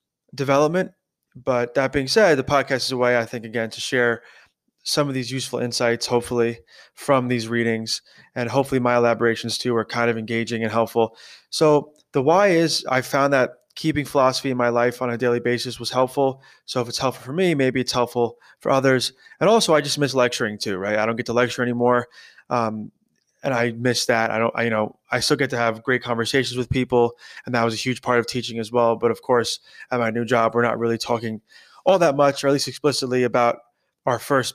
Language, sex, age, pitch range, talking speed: English, male, 20-39, 115-130 Hz, 220 wpm